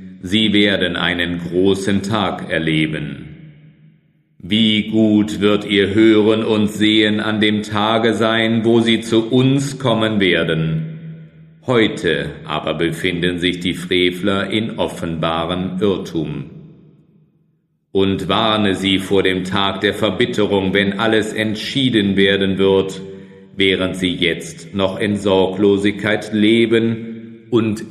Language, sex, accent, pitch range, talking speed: German, male, German, 95-115 Hz, 115 wpm